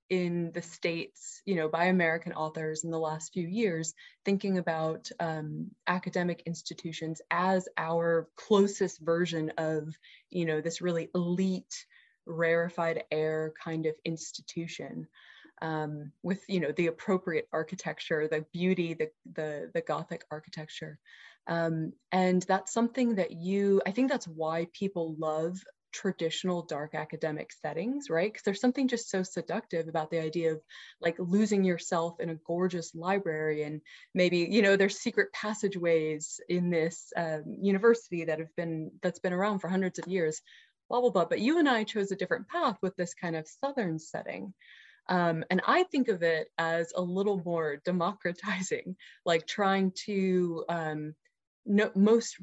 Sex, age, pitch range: female, 20-39, 160-195 Hz